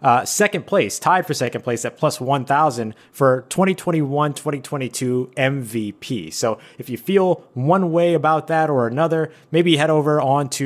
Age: 30-49